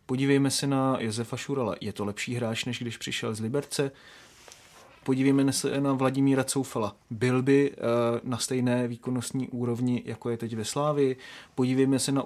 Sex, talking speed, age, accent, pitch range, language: male, 160 wpm, 30-49, native, 120-135 Hz, Czech